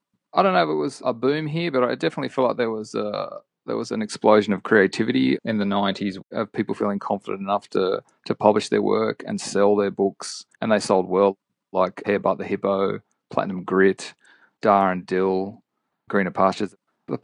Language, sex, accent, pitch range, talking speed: English, male, Australian, 95-115 Hz, 200 wpm